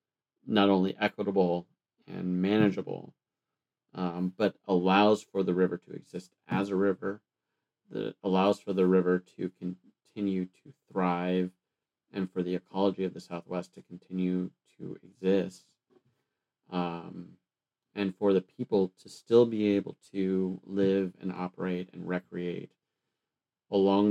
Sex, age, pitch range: male, 30-49, 90-100 Hz